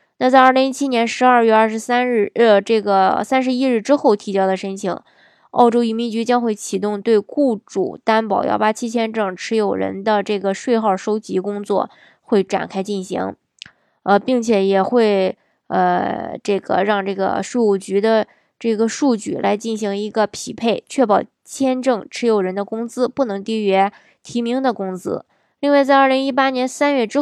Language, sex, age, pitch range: Chinese, female, 20-39, 200-255 Hz